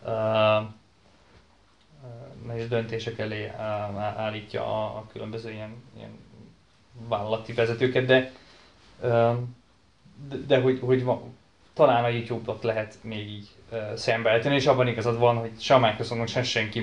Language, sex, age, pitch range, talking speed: Hungarian, male, 20-39, 110-120 Hz, 130 wpm